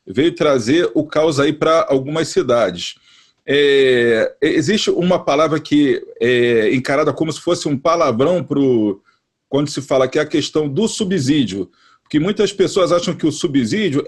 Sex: male